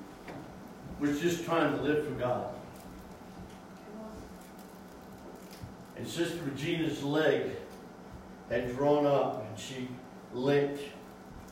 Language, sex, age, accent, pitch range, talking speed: English, male, 60-79, American, 140-170 Hz, 90 wpm